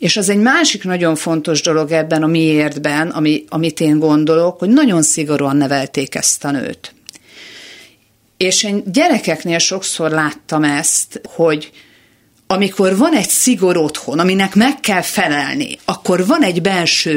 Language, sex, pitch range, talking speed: Hungarian, female, 150-195 Hz, 145 wpm